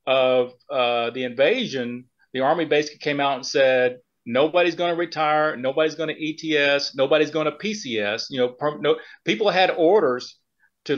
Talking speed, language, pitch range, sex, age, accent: 160 wpm, English, 130-165 Hz, male, 40-59, American